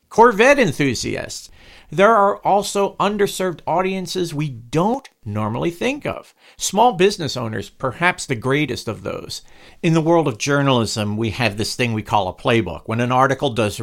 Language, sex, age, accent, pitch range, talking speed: English, male, 50-69, American, 115-185 Hz, 160 wpm